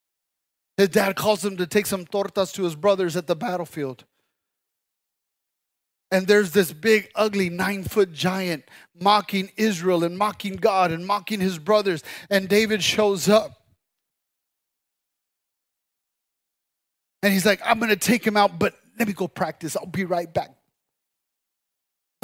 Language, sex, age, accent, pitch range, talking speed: English, male, 30-49, American, 200-245 Hz, 145 wpm